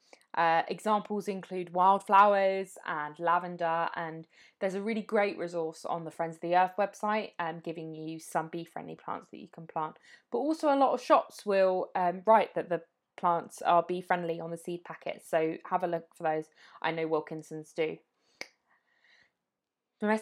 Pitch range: 165-210 Hz